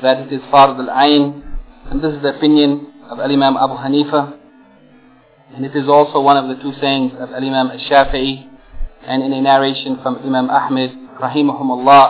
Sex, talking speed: male, 170 wpm